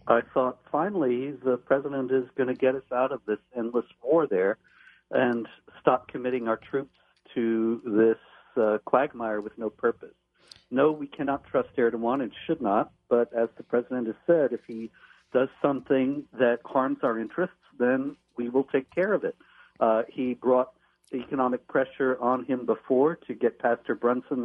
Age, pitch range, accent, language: 60-79, 120-140 Hz, American, English